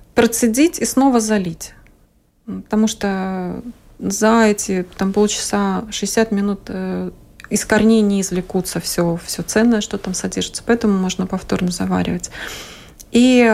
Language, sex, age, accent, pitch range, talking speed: Russian, female, 20-39, native, 195-230 Hz, 110 wpm